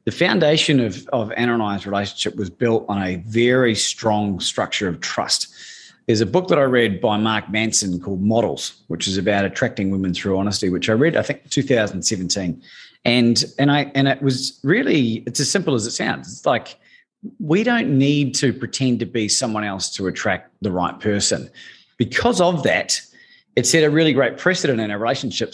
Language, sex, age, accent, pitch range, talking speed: English, male, 30-49, Australian, 105-145 Hz, 190 wpm